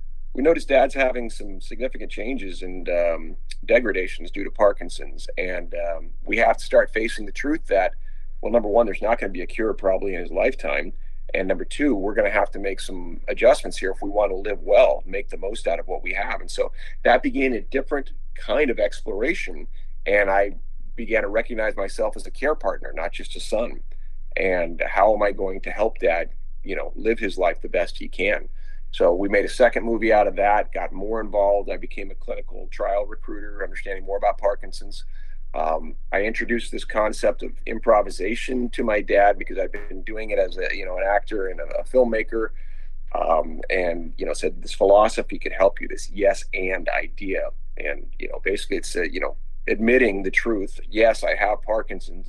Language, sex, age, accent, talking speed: English, male, 40-59, American, 200 wpm